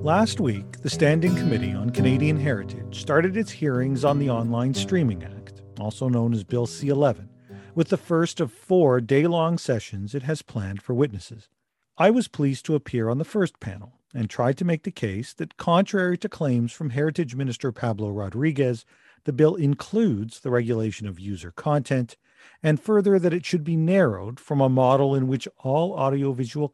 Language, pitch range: English, 115-160 Hz